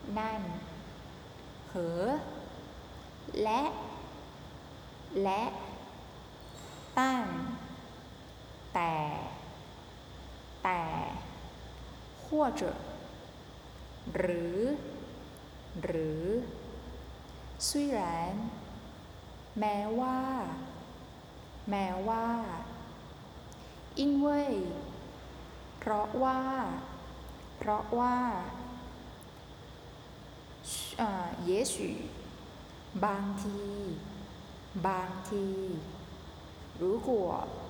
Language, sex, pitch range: Chinese, female, 180-245 Hz